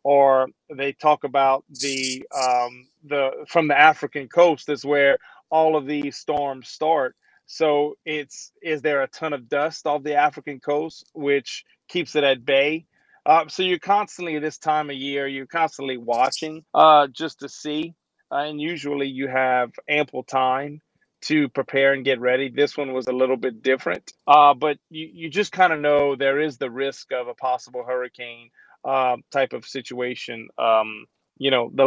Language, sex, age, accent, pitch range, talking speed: English, male, 30-49, American, 130-150 Hz, 175 wpm